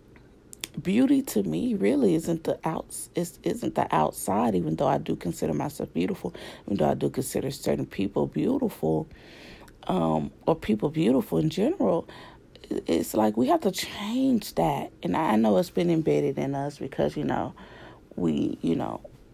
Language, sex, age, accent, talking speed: English, female, 30-49, American, 165 wpm